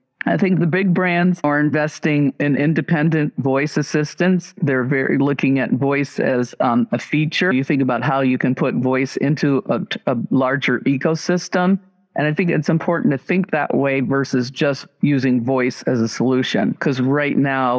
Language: English